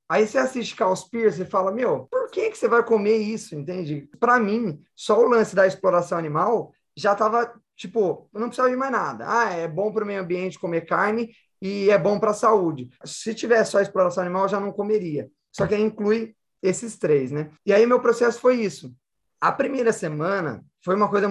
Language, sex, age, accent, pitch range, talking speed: Portuguese, male, 20-39, Brazilian, 175-220 Hz, 215 wpm